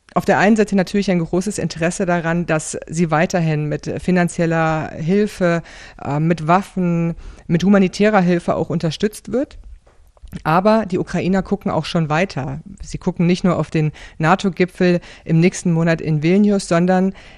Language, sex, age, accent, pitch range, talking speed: German, female, 40-59, German, 160-190 Hz, 150 wpm